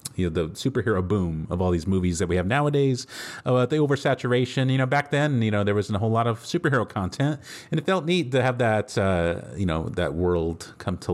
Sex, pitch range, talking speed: male, 95-135 Hz, 235 wpm